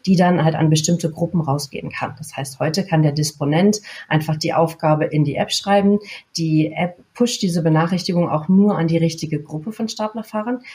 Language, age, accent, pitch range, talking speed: German, 40-59, German, 145-170 Hz, 190 wpm